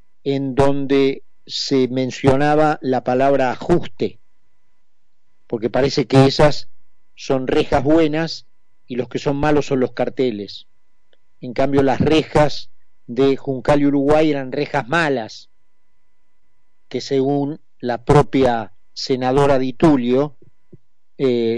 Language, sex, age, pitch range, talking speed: Spanish, male, 40-59, 125-155 Hz, 115 wpm